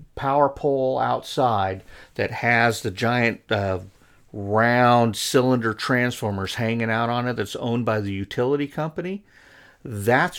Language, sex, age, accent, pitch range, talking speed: English, male, 50-69, American, 105-140 Hz, 125 wpm